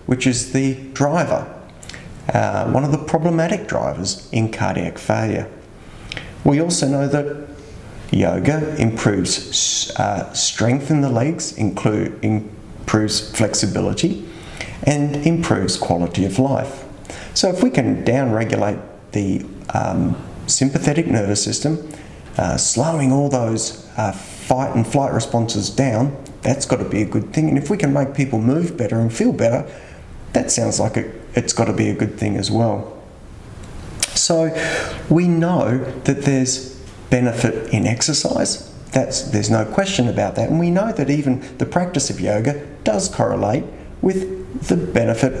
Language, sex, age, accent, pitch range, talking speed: English, male, 30-49, Australian, 110-145 Hz, 145 wpm